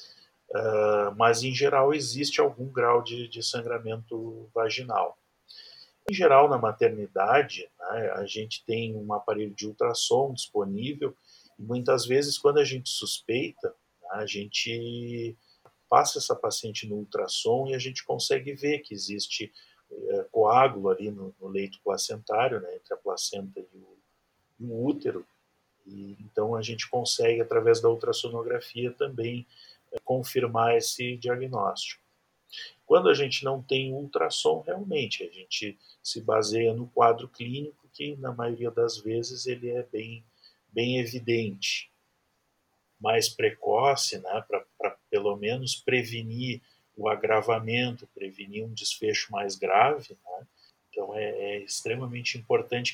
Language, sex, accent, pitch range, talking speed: Portuguese, male, Brazilian, 110-140 Hz, 130 wpm